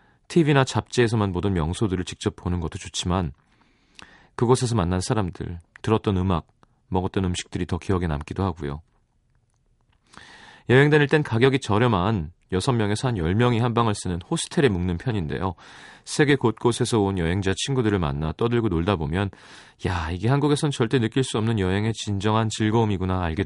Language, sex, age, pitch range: Korean, male, 30-49, 90-120 Hz